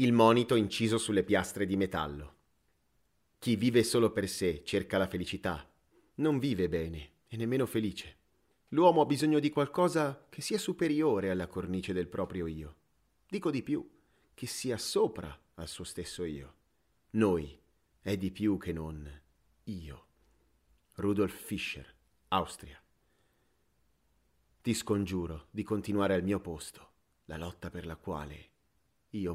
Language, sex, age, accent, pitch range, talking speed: Italian, male, 30-49, native, 85-110 Hz, 135 wpm